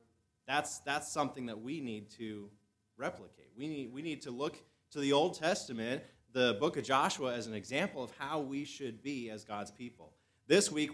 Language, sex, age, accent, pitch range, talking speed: English, male, 30-49, American, 115-145 Hz, 190 wpm